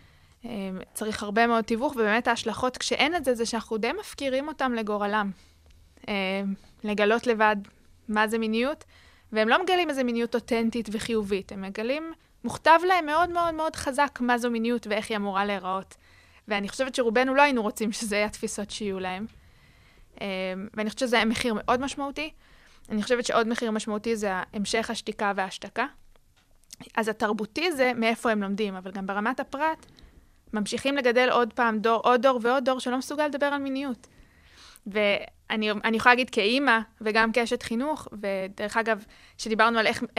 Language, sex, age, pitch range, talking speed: Hebrew, female, 20-39, 210-255 Hz, 150 wpm